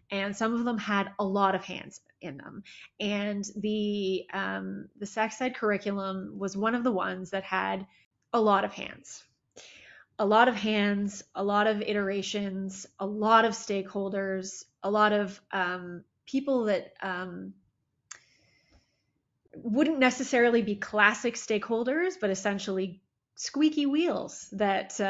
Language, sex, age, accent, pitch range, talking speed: English, female, 20-39, American, 195-230 Hz, 140 wpm